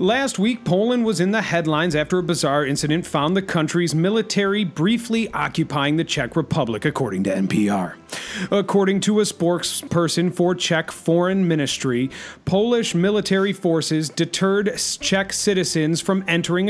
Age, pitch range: 40-59, 150-190 Hz